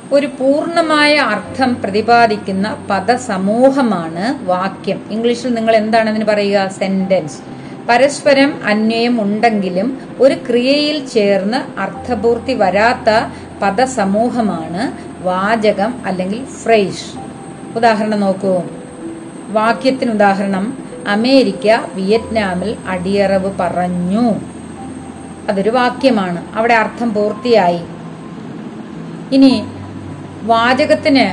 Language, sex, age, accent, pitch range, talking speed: Malayalam, female, 30-49, native, 200-240 Hz, 70 wpm